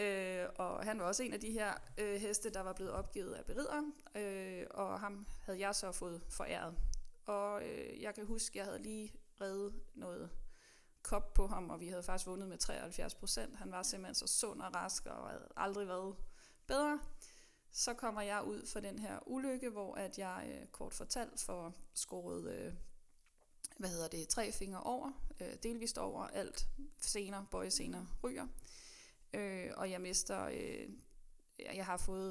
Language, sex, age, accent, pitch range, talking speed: Danish, female, 20-39, native, 190-235 Hz, 180 wpm